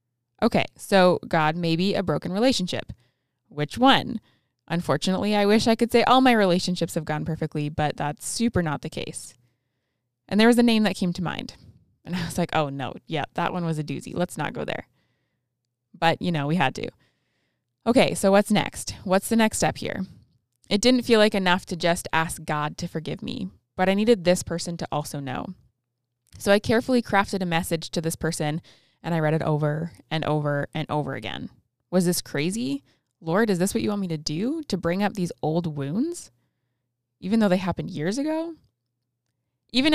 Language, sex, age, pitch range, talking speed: English, female, 20-39, 145-195 Hz, 195 wpm